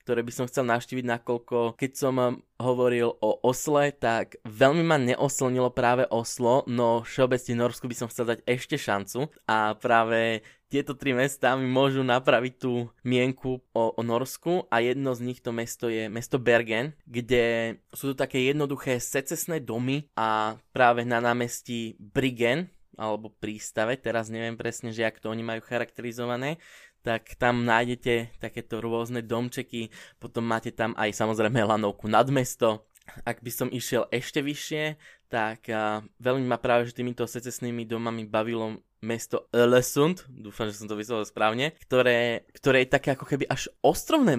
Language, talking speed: Slovak, 155 wpm